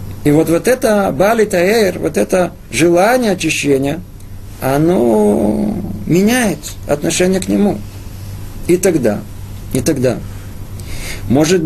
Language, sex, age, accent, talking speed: Russian, male, 50-69, native, 105 wpm